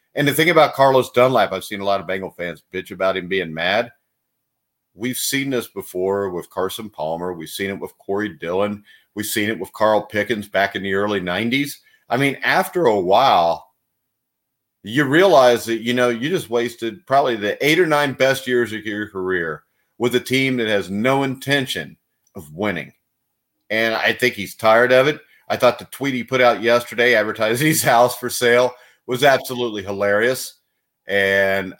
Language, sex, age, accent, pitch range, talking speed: English, male, 50-69, American, 100-125 Hz, 185 wpm